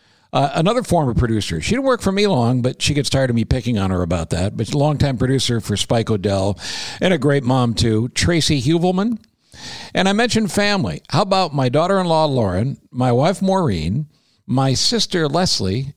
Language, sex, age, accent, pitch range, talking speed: English, male, 60-79, American, 115-180 Hz, 190 wpm